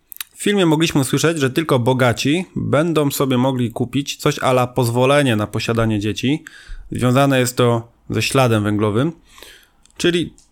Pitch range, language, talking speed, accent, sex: 115-140 Hz, Polish, 135 wpm, native, male